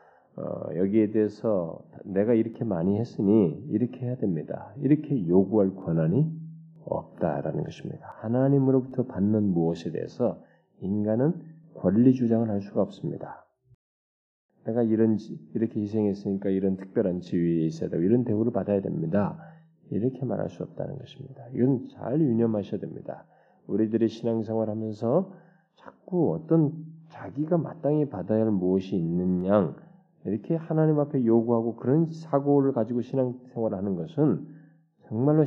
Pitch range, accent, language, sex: 105-160 Hz, native, Korean, male